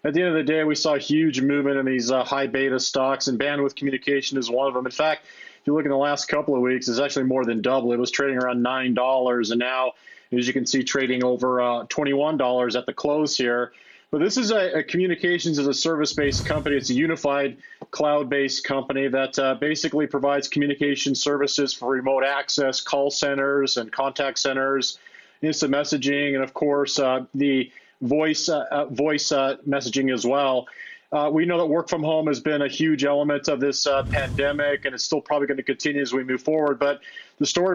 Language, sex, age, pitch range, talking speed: English, male, 30-49, 135-150 Hz, 205 wpm